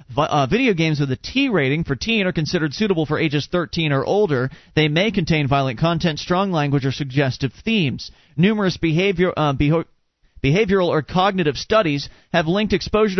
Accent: American